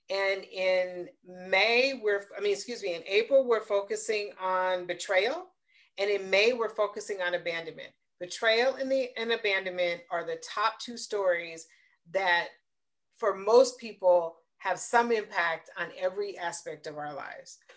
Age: 40-59